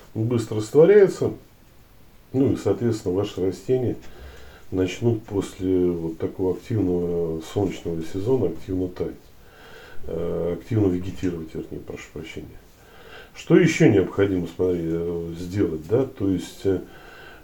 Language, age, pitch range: Russian, 40-59, 90-105 Hz